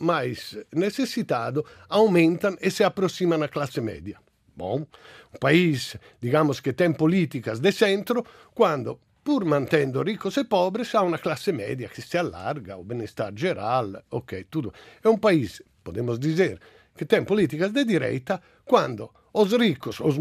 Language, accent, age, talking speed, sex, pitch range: Portuguese, Italian, 50-69, 150 wpm, male, 155-210 Hz